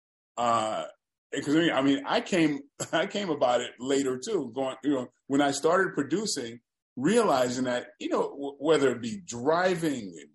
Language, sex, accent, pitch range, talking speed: English, male, American, 115-145 Hz, 170 wpm